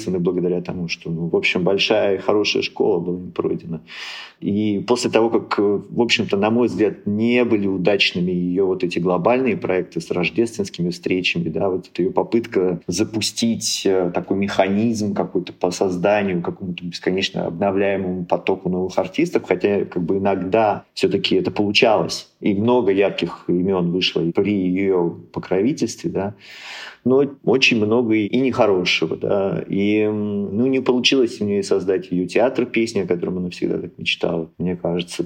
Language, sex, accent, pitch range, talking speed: Russian, male, native, 90-115 Hz, 155 wpm